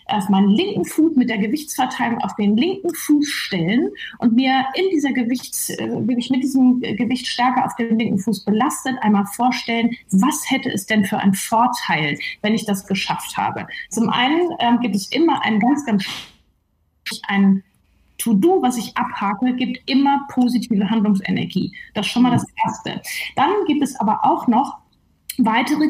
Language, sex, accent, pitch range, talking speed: German, female, German, 215-265 Hz, 170 wpm